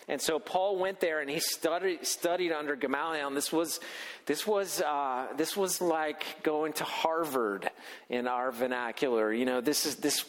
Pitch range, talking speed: 145-185 Hz, 180 wpm